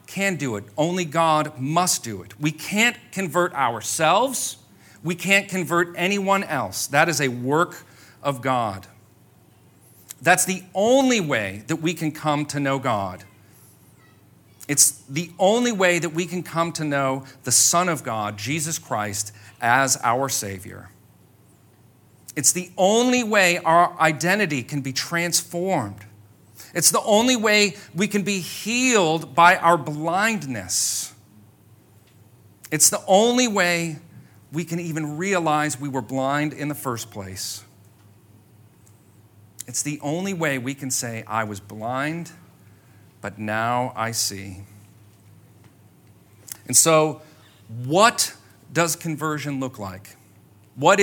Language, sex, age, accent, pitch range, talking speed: English, male, 40-59, American, 110-170 Hz, 130 wpm